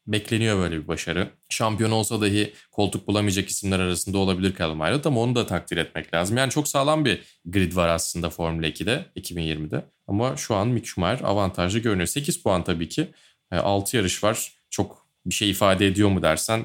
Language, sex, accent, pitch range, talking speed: Turkish, male, native, 90-130 Hz, 185 wpm